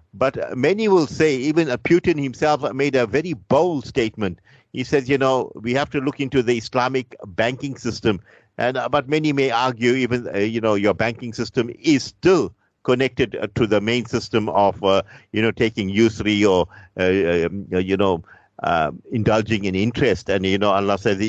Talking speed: 180 wpm